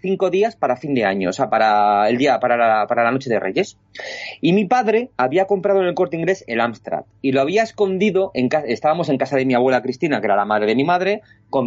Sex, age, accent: male, 30-49, Spanish